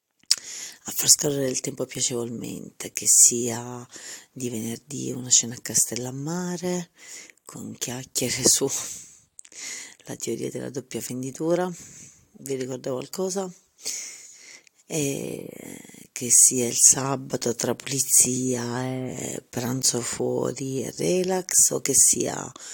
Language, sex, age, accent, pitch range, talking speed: Italian, female, 40-59, native, 120-140 Hz, 105 wpm